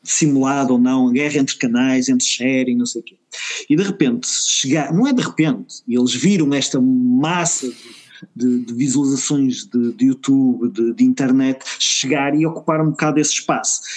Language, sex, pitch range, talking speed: Portuguese, male, 135-175 Hz, 175 wpm